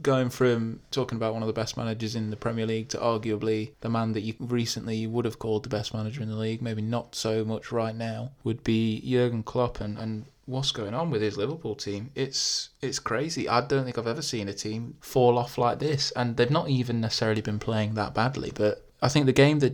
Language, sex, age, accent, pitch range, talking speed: English, male, 20-39, British, 105-120 Hz, 235 wpm